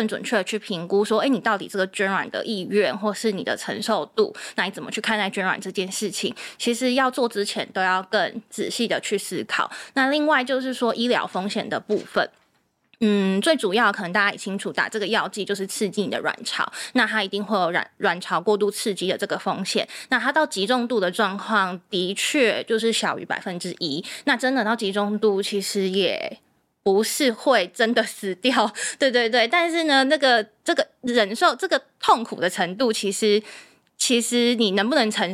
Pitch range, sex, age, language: 195-235 Hz, female, 20-39, Chinese